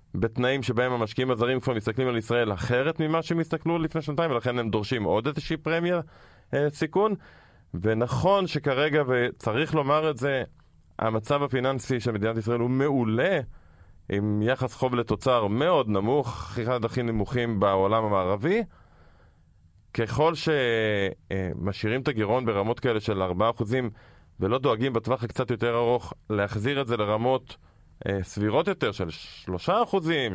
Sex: male